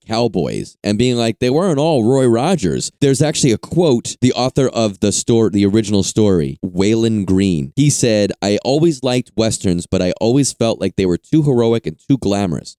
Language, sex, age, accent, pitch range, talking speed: English, male, 30-49, American, 100-135 Hz, 190 wpm